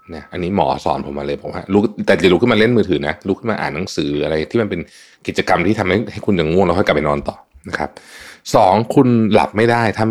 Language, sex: Thai, male